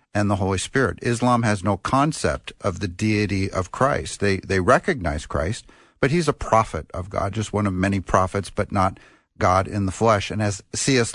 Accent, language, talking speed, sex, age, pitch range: American, English, 200 wpm, male, 50-69, 95-115 Hz